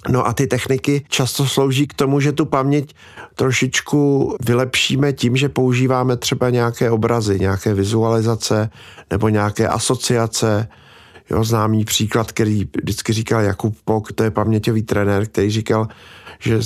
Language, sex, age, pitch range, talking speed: Czech, male, 50-69, 110-130 Hz, 135 wpm